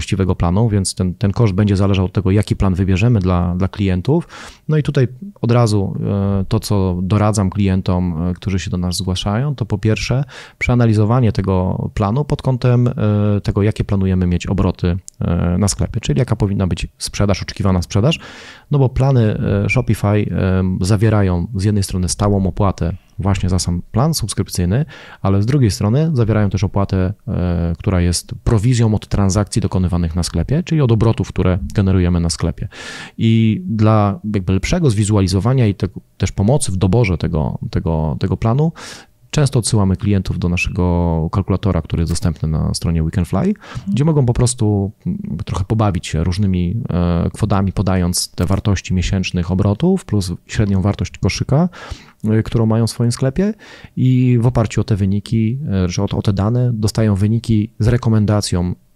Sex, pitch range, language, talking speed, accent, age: male, 95-115 Hz, Polish, 155 wpm, native, 30-49